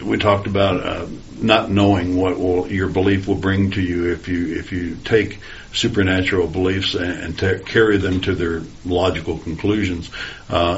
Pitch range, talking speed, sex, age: 85-100 Hz, 175 wpm, male, 60-79